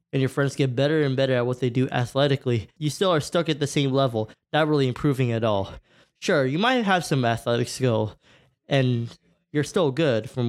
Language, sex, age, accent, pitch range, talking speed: English, male, 20-39, American, 125-160 Hz, 210 wpm